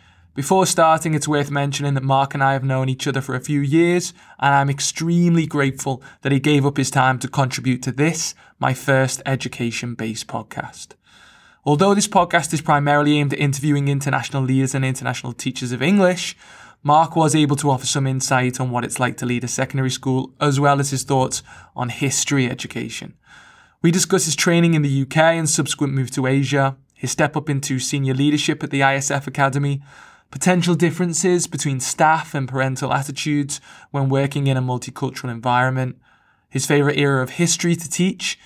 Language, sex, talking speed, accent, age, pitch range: English, male, 180 wpm, British, 20-39, 130-150 Hz